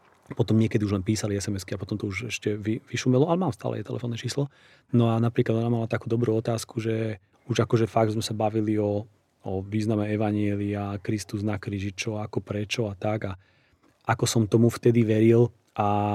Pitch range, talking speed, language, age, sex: 105-120 Hz, 190 wpm, Slovak, 30-49, male